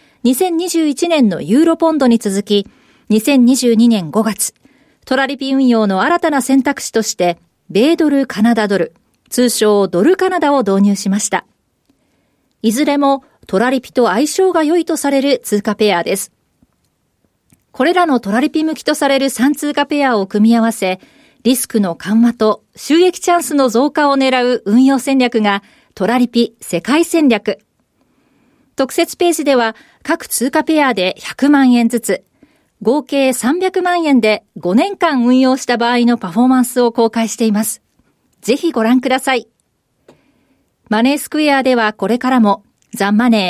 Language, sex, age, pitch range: Japanese, female, 40-59, 220-290 Hz